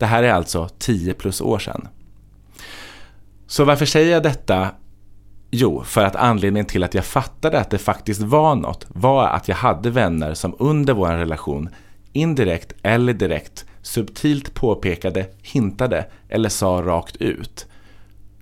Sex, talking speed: male, 145 wpm